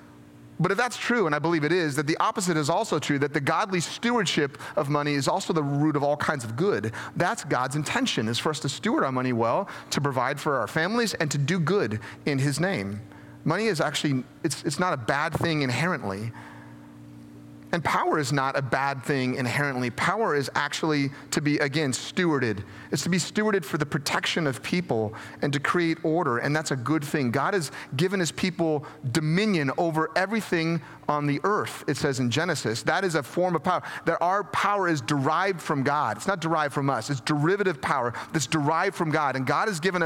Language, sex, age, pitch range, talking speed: English, male, 30-49, 125-170 Hz, 210 wpm